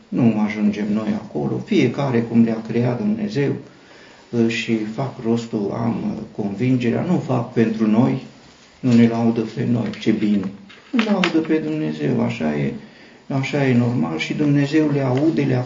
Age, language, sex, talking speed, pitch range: 50-69, Romanian, male, 155 wpm, 110-125 Hz